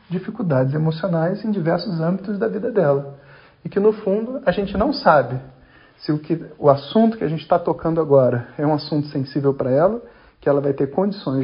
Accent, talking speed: Brazilian, 200 wpm